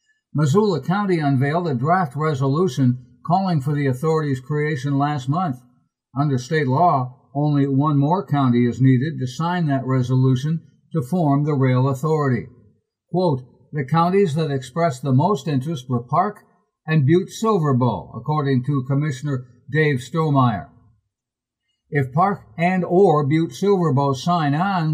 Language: English